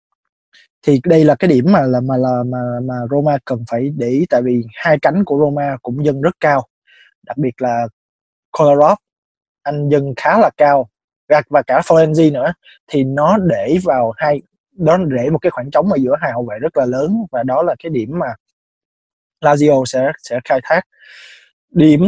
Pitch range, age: 130-165 Hz, 20-39